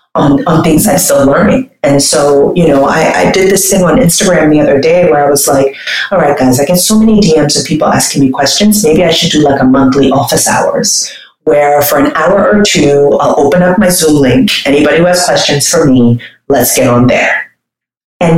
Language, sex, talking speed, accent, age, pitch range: English, female, 225 wpm, American, 30-49, 155-215 Hz